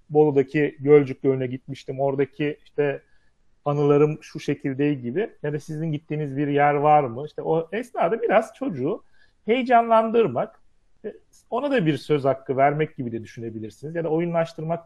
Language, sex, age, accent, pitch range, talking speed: Turkish, male, 40-59, native, 140-185 Hz, 145 wpm